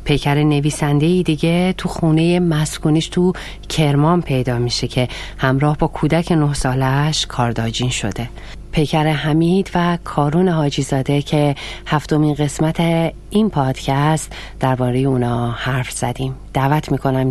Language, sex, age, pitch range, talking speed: Persian, female, 30-49, 130-160 Hz, 120 wpm